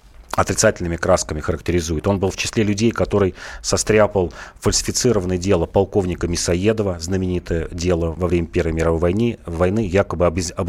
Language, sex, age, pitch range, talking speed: Russian, male, 30-49, 90-115 Hz, 140 wpm